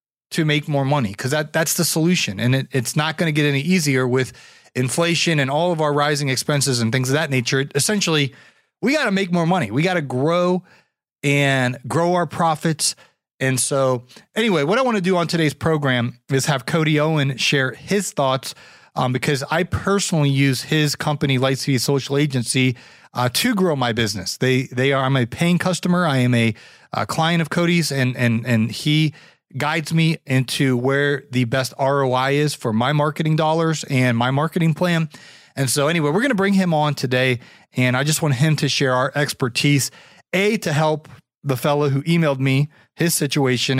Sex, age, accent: male, 30-49, American